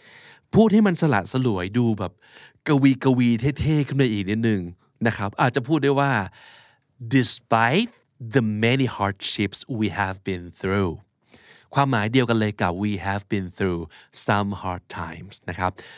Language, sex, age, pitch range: Thai, male, 60-79, 100-135 Hz